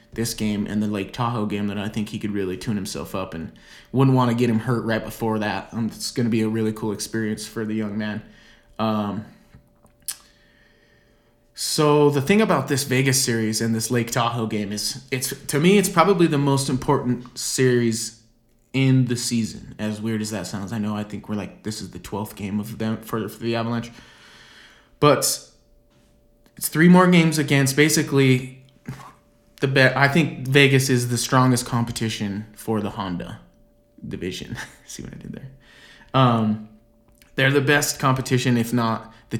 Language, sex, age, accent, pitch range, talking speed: English, male, 20-39, American, 110-130 Hz, 180 wpm